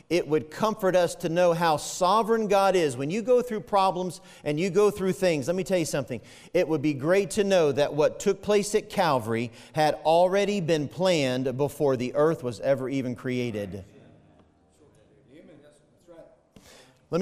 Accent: American